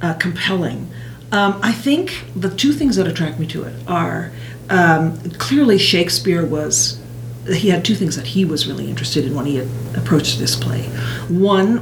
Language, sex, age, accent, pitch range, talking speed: English, female, 50-69, American, 125-190 Hz, 180 wpm